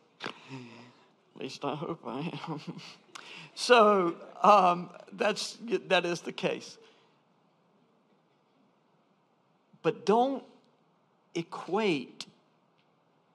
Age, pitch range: 50-69, 150-215 Hz